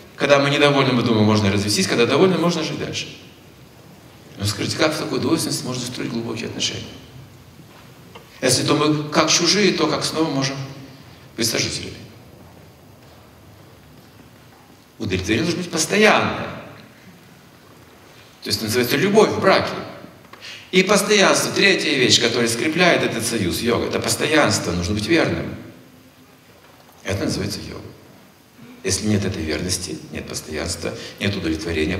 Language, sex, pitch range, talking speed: Russian, male, 105-170 Hz, 130 wpm